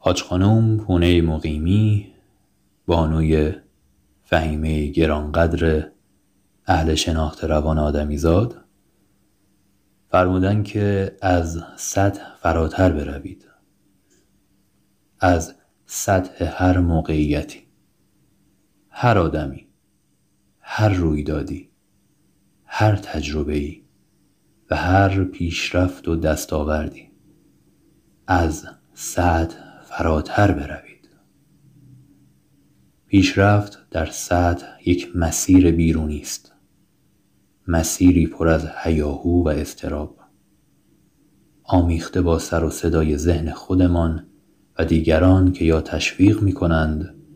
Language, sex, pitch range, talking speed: English, male, 80-95 Hz, 80 wpm